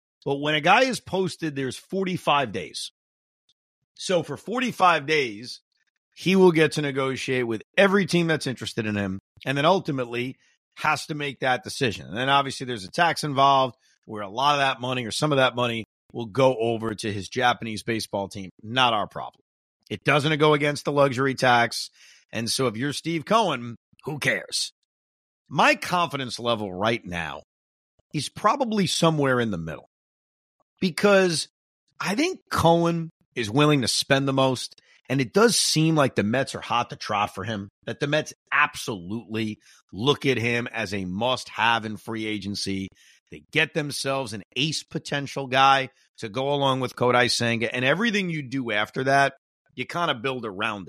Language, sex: English, male